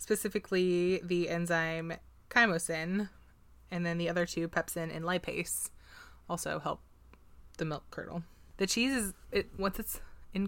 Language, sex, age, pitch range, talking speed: English, female, 20-39, 160-185 Hz, 135 wpm